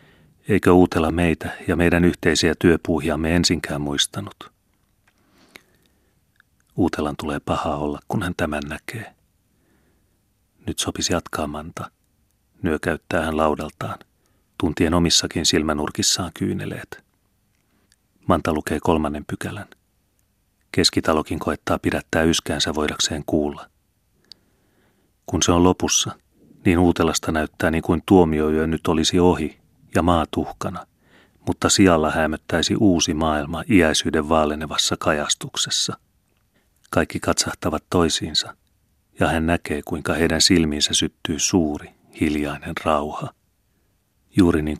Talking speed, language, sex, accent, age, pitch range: 105 wpm, Finnish, male, native, 30-49, 75-90 Hz